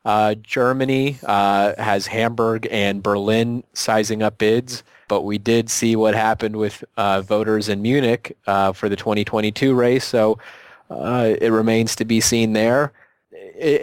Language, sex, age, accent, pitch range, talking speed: English, male, 30-49, American, 105-125 Hz, 150 wpm